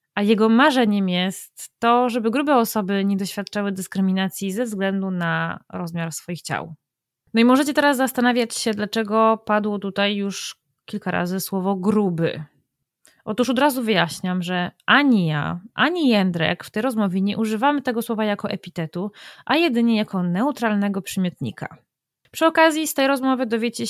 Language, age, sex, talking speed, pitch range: Polish, 20-39, female, 150 wpm, 195-235 Hz